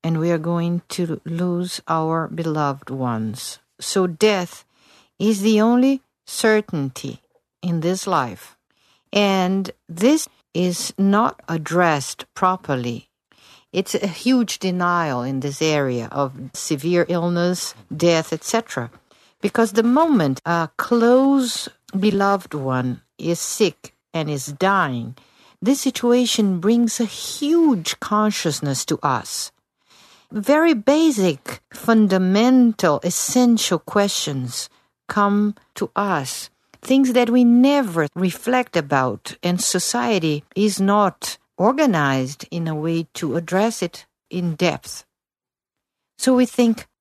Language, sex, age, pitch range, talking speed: English, female, 50-69, 160-235 Hz, 110 wpm